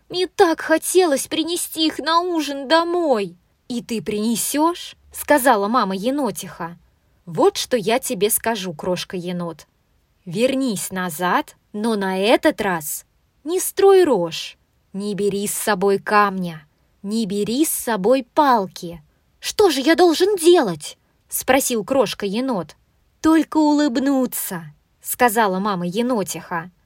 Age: 20-39